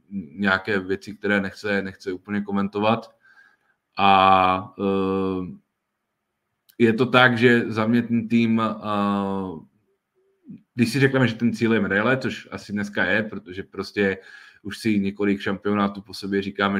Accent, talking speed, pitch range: native, 140 wpm, 100-115 Hz